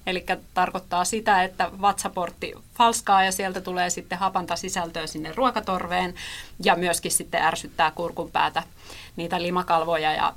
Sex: female